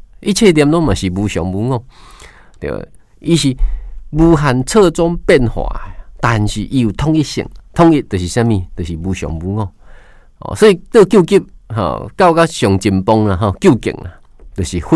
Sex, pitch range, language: male, 90-125 Hz, Chinese